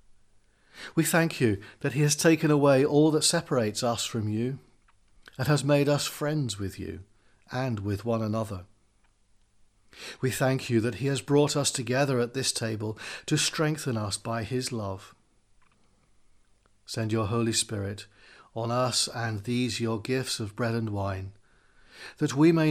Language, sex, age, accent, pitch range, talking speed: English, male, 40-59, British, 100-140 Hz, 160 wpm